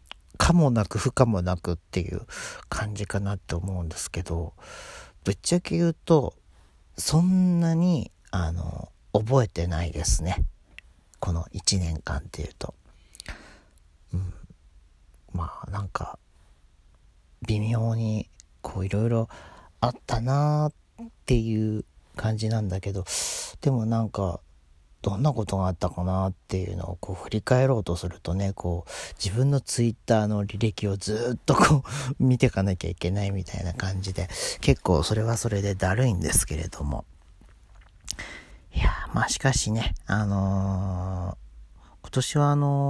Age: 40-59